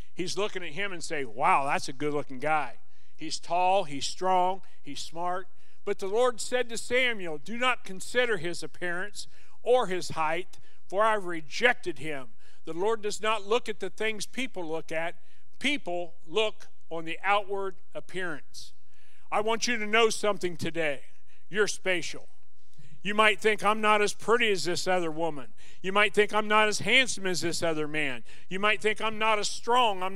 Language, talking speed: English, 185 wpm